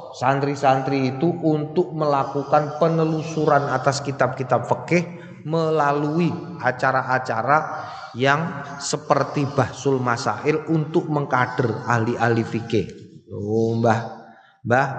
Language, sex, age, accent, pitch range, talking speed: Indonesian, male, 30-49, native, 125-155 Hz, 90 wpm